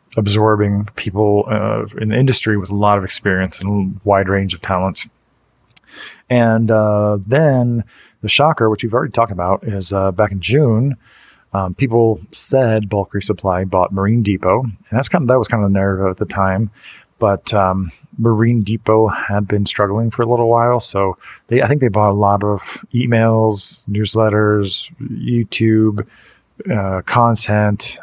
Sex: male